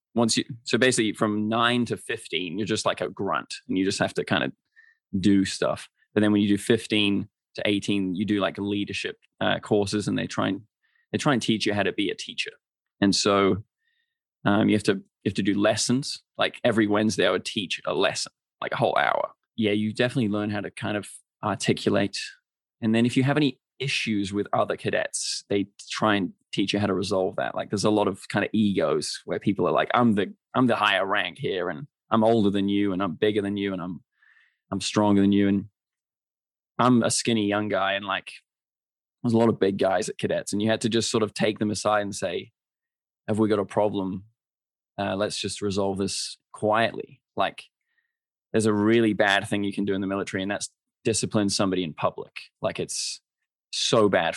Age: 20-39